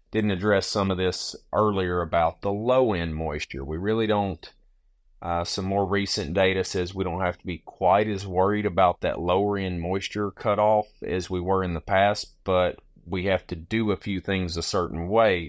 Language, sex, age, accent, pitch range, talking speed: English, male, 30-49, American, 85-100 Hz, 200 wpm